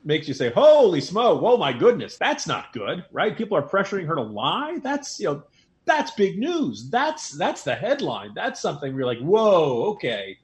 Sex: male